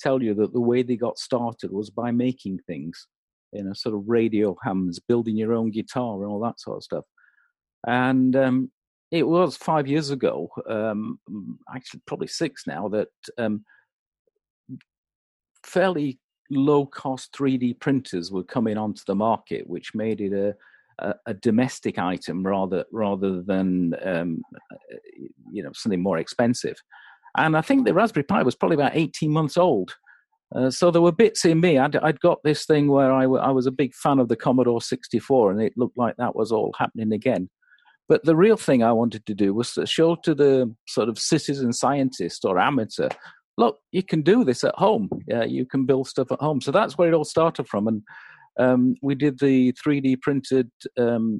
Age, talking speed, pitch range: 50-69, 190 wpm, 110-150 Hz